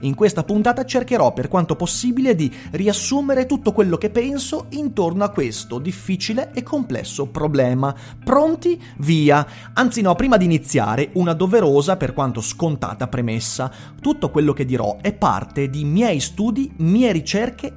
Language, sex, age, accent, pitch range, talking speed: Italian, male, 30-49, native, 135-215 Hz, 150 wpm